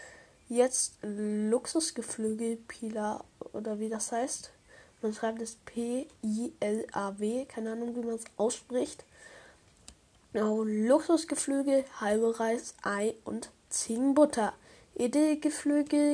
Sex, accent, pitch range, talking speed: female, German, 220-265 Hz, 90 wpm